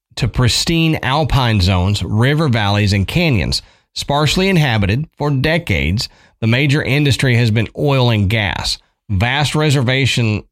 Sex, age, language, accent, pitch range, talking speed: male, 40-59, English, American, 100-130 Hz, 125 wpm